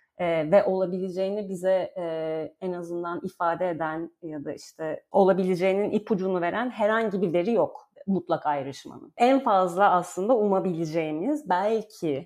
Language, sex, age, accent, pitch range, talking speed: Turkish, female, 40-59, native, 180-230 Hz, 115 wpm